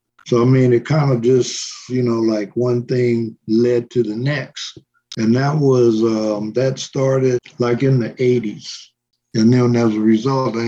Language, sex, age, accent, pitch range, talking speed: English, male, 50-69, American, 110-125 Hz, 180 wpm